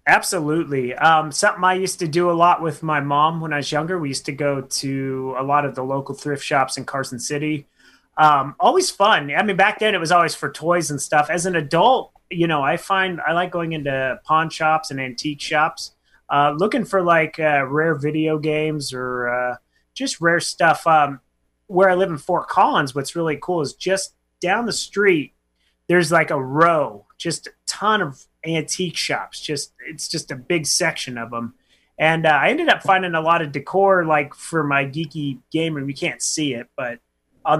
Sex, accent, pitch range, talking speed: male, American, 140-170 Hz, 205 wpm